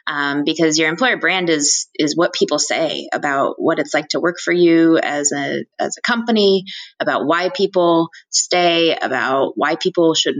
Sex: female